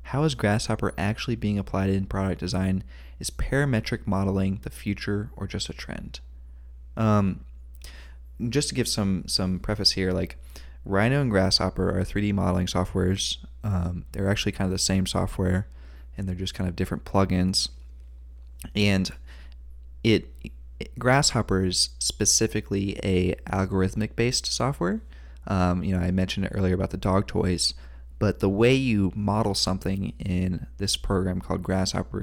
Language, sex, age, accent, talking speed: English, male, 20-39, American, 155 wpm